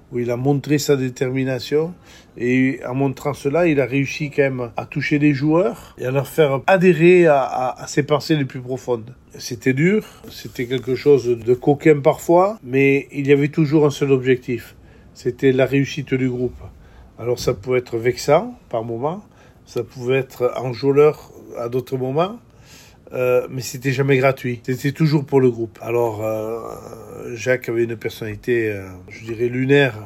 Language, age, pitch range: French, 50-69, 120-145 Hz